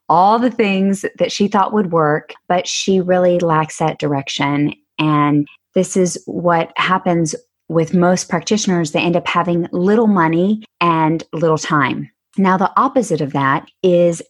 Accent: American